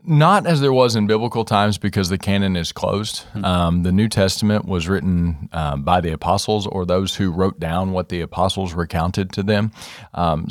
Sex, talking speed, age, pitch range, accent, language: male, 195 wpm, 40-59, 85-105 Hz, American, English